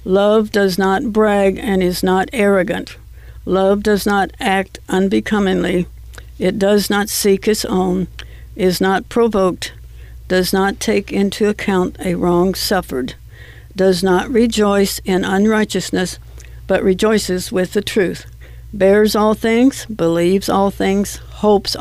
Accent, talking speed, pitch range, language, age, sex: American, 130 wpm, 170-205 Hz, English, 60-79, female